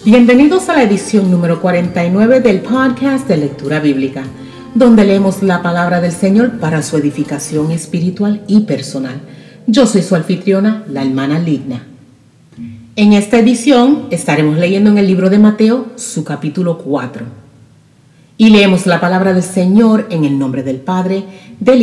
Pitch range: 145-215 Hz